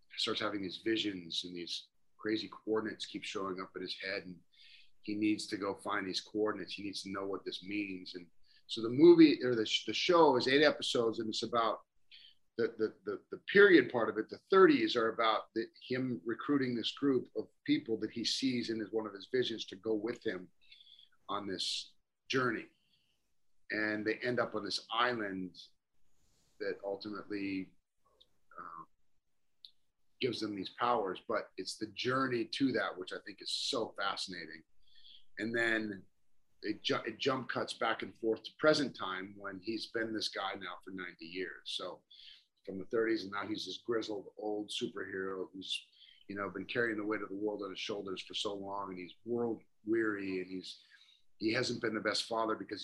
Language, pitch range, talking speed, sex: English, 95-115 Hz, 190 wpm, male